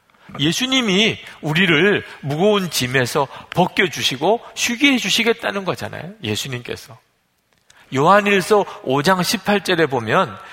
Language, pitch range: Korean, 125-205 Hz